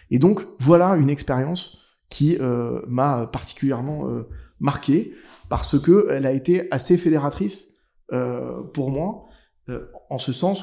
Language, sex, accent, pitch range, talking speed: French, male, French, 125-175 Hz, 135 wpm